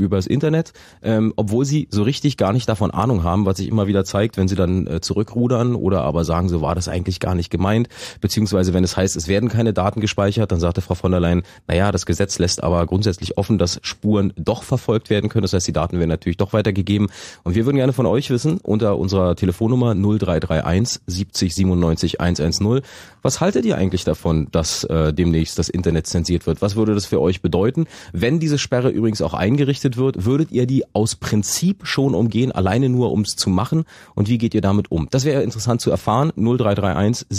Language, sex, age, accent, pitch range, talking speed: German, male, 30-49, German, 90-120 Hz, 215 wpm